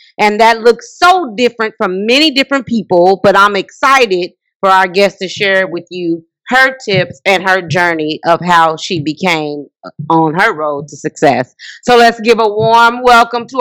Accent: American